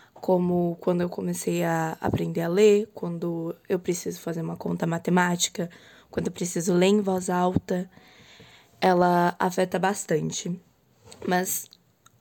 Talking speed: 130 wpm